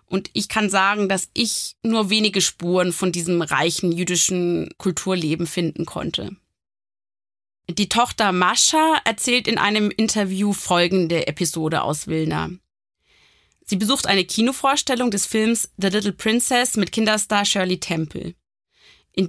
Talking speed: 130 wpm